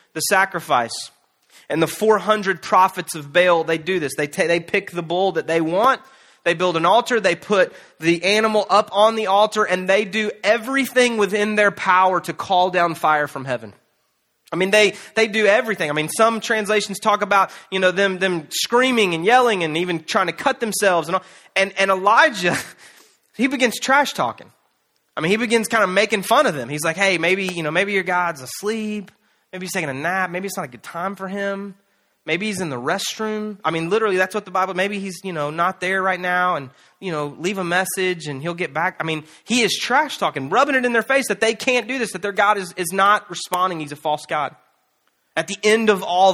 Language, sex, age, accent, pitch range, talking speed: English, male, 30-49, American, 175-215 Hz, 225 wpm